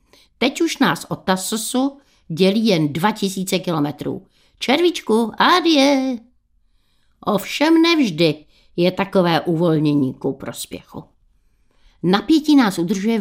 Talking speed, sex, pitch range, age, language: 95 wpm, female, 165-235 Hz, 60-79, Czech